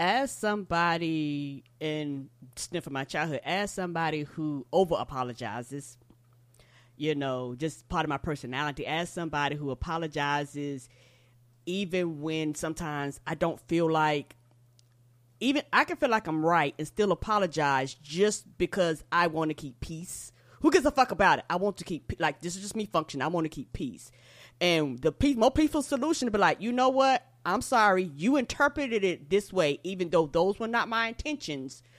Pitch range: 140-200 Hz